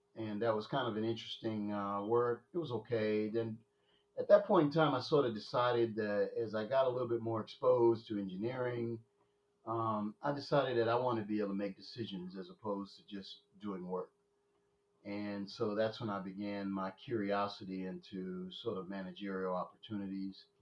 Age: 40-59